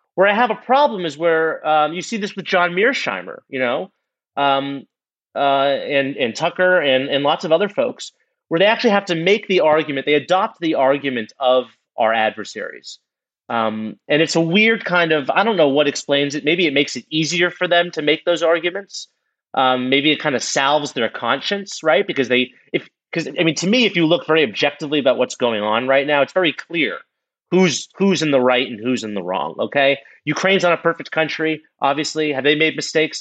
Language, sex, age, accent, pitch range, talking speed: English, male, 30-49, American, 125-170 Hz, 210 wpm